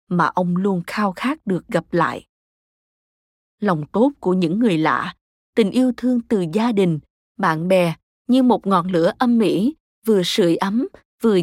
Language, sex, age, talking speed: Vietnamese, female, 20-39, 170 wpm